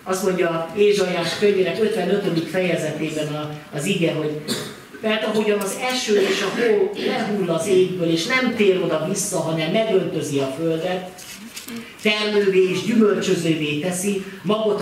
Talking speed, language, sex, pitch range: 125 wpm, Hungarian, male, 160-210 Hz